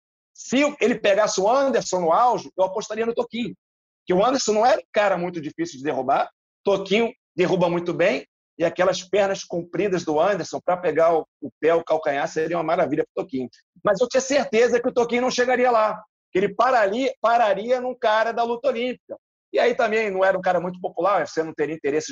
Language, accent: Portuguese, Brazilian